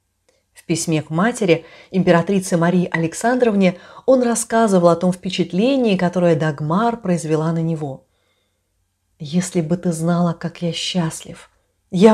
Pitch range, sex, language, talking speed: 160-210 Hz, female, Russian, 120 wpm